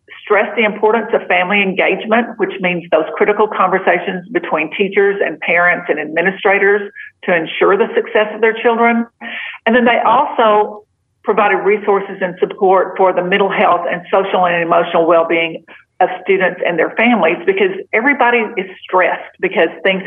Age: 50-69